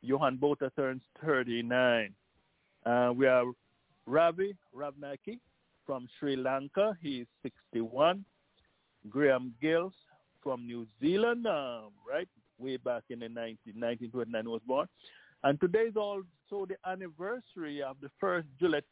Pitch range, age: 120-180 Hz, 50-69